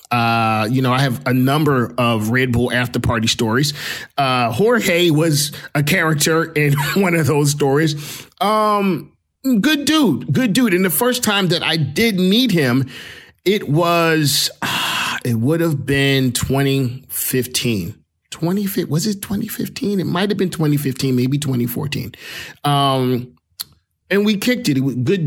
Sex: male